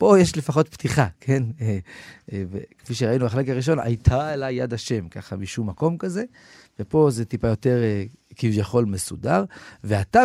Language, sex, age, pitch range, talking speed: Hebrew, male, 40-59, 110-165 Hz, 140 wpm